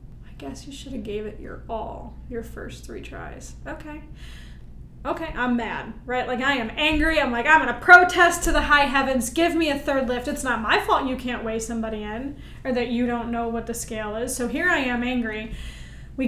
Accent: American